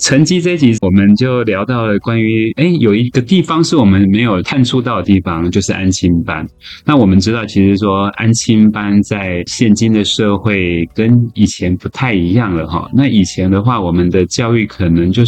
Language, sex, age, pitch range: Chinese, male, 20-39, 95-115 Hz